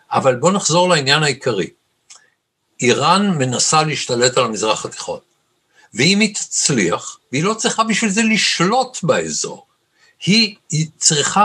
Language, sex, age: Hebrew, male, 60-79